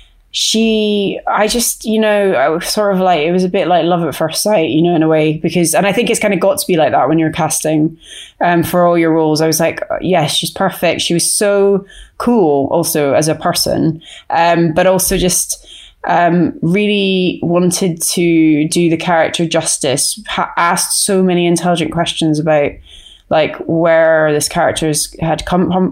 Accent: British